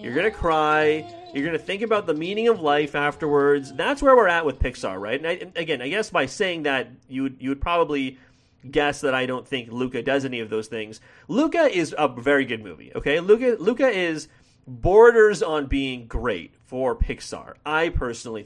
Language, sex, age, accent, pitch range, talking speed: English, male, 30-49, American, 125-175 Hz, 200 wpm